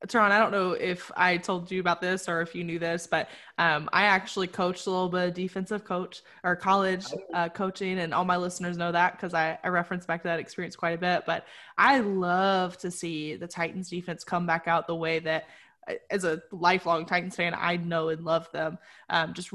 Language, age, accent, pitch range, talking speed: English, 20-39, American, 175-205 Hz, 220 wpm